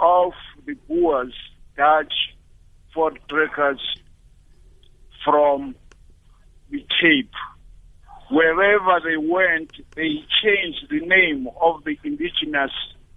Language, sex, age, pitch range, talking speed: English, male, 50-69, 140-205 Hz, 85 wpm